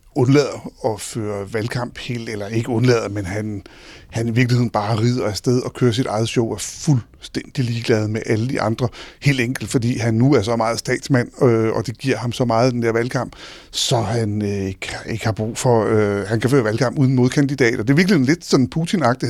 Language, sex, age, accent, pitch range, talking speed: Danish, male, 60-79, native, 120-165 Hz, 215 wpm